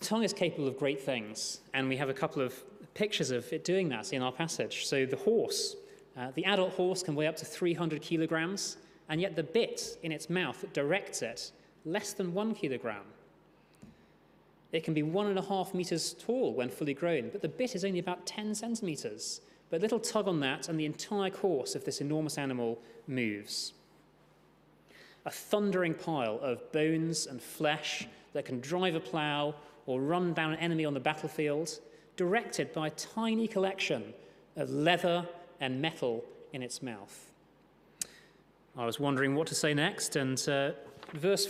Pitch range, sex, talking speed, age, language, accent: 145-195 Hz, male, 180 wpm, 30-49, English, British